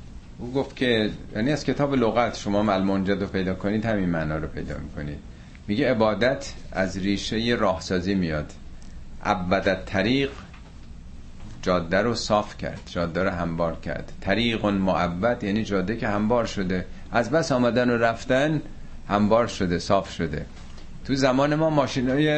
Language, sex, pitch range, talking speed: Persian, male, 90-125 Hz, 145 wpm